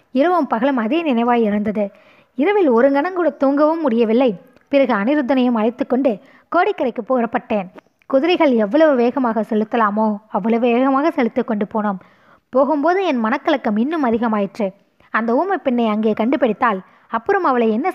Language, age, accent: Tamil, 20-39, native